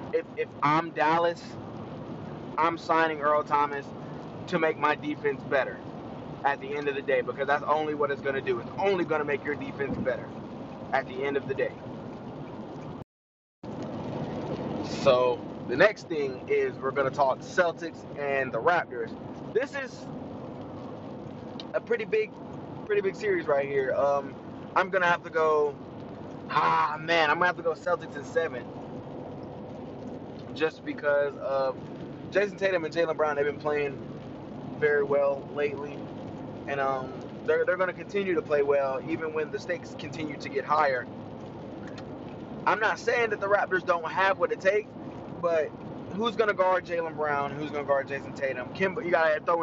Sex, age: male, 20-39